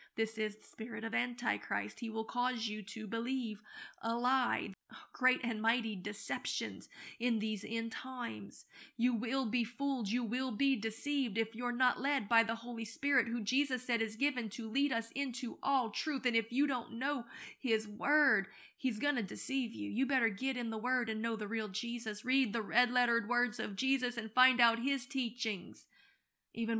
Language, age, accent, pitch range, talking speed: English, 30-49, American, 225-255 Hz, 190 wpm